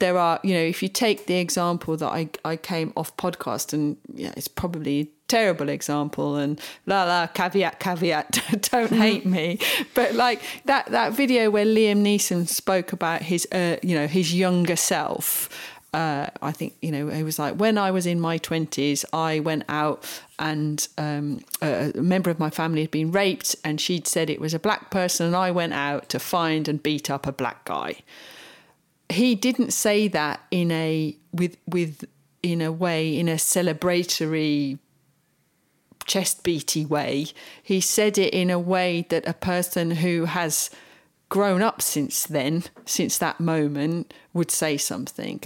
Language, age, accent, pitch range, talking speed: English, 40-59, British, 155-185 Hz, 175 wpm